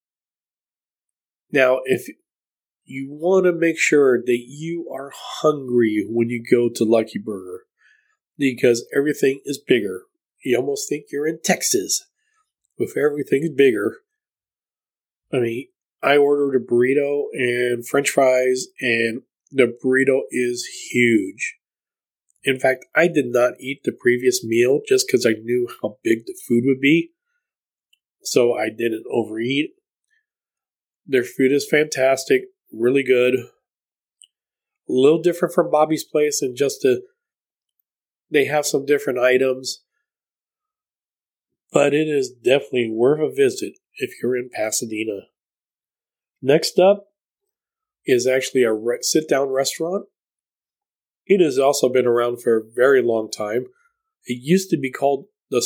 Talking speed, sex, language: 130 wpm, male, English